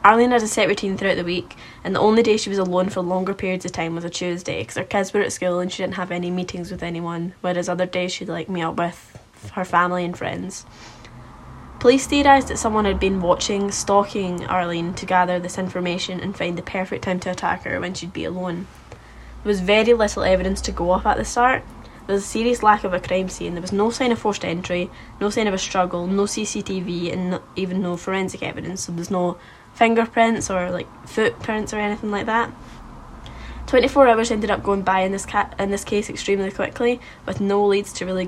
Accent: British